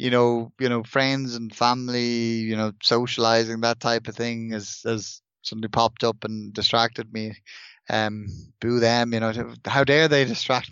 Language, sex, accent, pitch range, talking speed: English, male, Irish, 105-125 Hz, 170 wpm